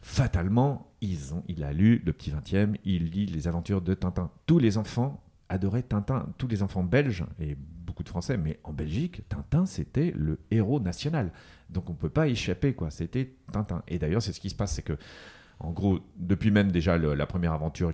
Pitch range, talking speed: 80-105 Hz, 210 wpm